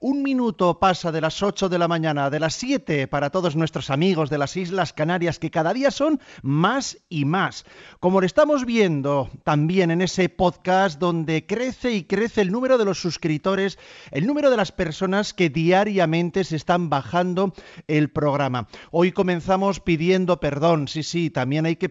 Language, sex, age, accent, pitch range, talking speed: Spanish, male, 40-59, Spanish, 150-185 Hz, 180 wpm